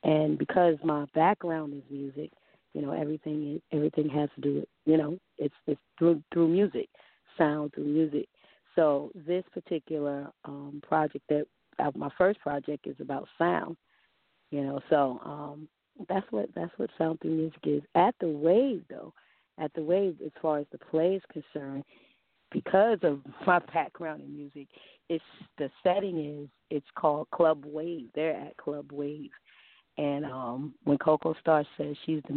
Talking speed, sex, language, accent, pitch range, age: 165 wpm, female, English, American, 145-160 Hz, 40-59